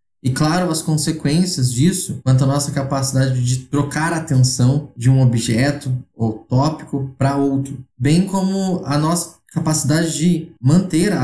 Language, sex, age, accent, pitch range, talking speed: Portuguese, male, 20-39, Brazilian, 125-155 Hz, 150 wpm